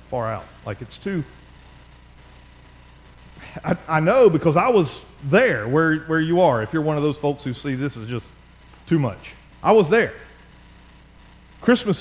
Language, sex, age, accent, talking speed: English, male, 40-59, American, 165 wpm